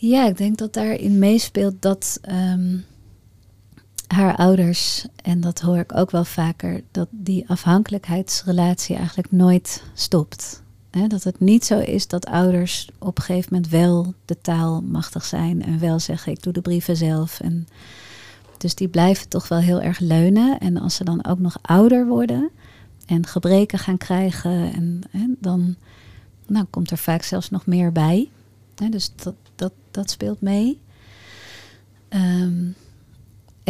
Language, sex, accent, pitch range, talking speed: Dutch, female, Dutch, 160-195 Hz, 155 wpm